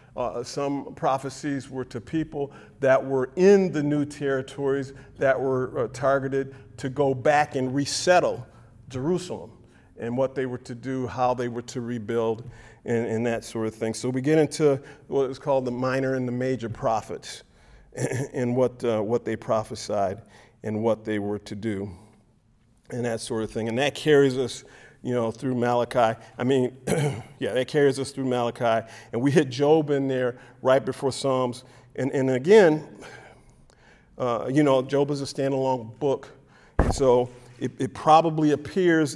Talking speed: 170 wpm